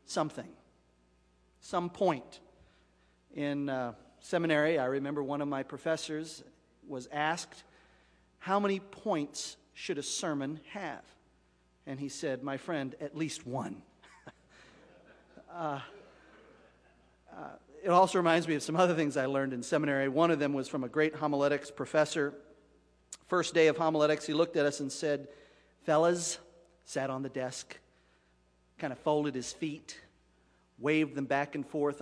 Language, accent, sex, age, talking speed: English, American, male, 40-59, 145 wpm